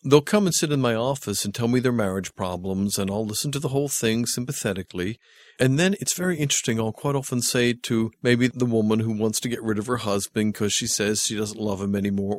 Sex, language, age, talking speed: male, English, 50-69, 240 wpm